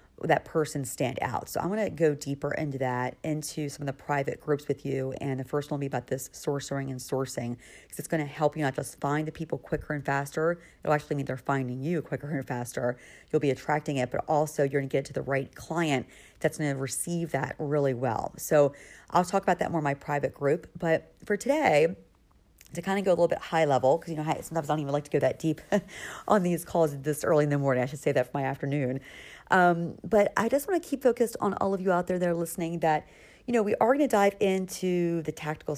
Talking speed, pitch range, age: 255 wpm, 140-165 Hz, 40-59